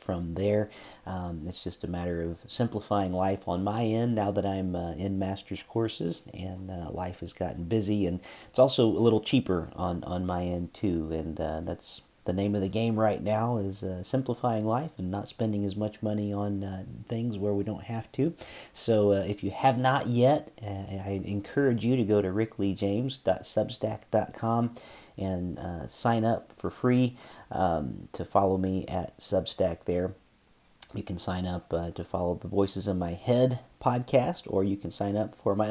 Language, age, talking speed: English, 40-59, 190 wpm